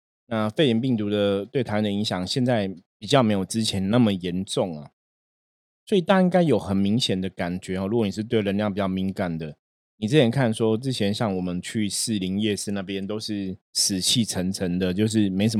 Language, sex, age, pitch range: Chinese, male, 20-39, 95-125 Hz